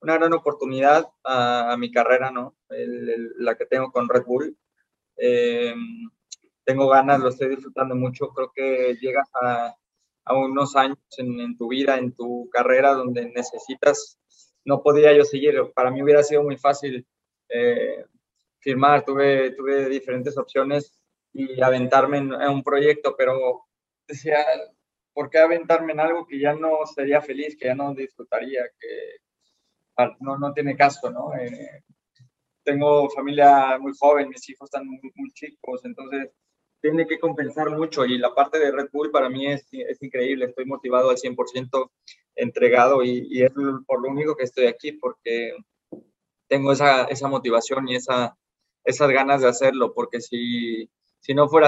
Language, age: Spanish, 20-39